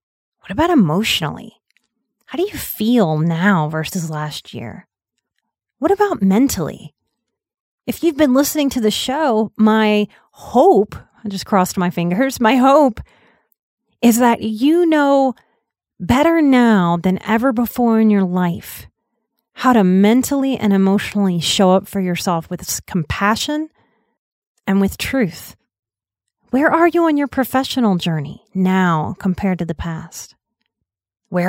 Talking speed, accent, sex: 130 wpm, American, female